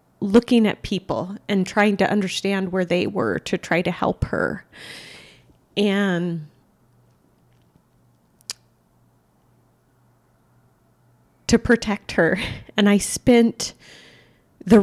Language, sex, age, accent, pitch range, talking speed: English, female, 30-49, American, 180-210 Hz, 95 wpm